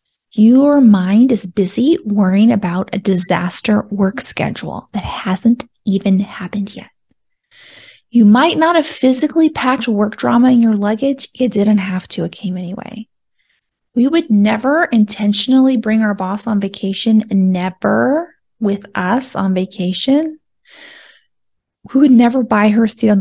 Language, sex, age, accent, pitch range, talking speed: English, female, 20-39, American, 205-260 Hz, 140 wpm